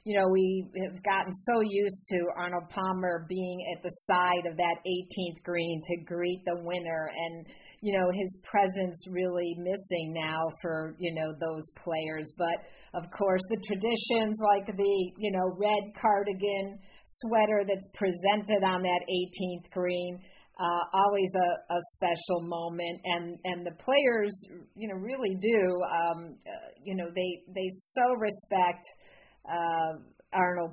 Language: English